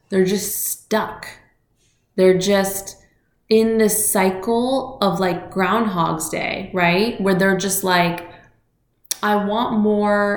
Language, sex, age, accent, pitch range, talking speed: English, female, 20-39, American, 170-205 Hz, 115 wpm